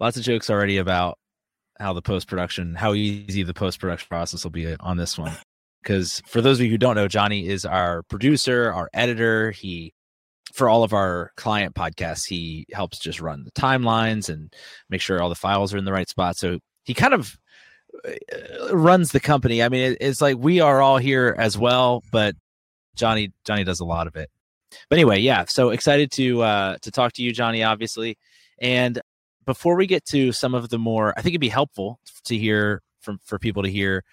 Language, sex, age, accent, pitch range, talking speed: English, male, 30-49, American, 90-120 Hz, 200 wpm